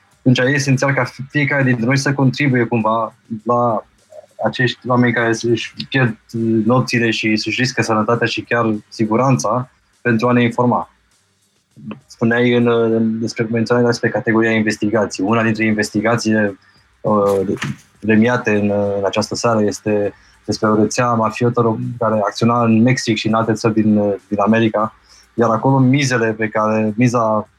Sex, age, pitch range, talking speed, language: male, 20-39, 110-125 Hz, 150 wpm, Romanian